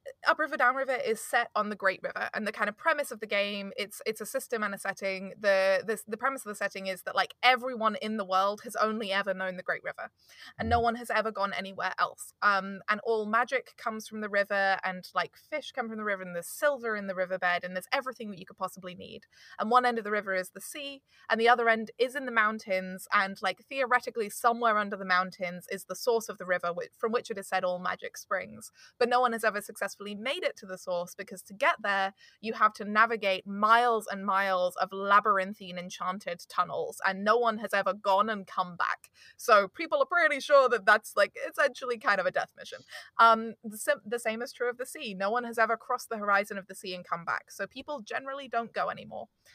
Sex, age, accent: female, 20-39, British